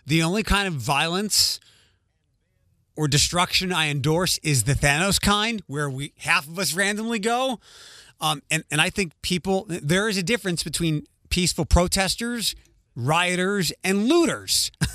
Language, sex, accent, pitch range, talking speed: English, male, American, 145-195 Hz, 145 wpm